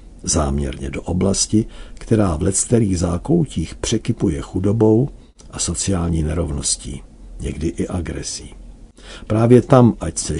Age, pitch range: 60-79, 80-100 Hz